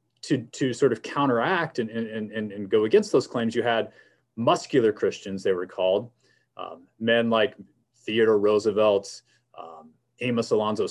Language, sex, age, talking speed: English, male, 30-49, 155 wpm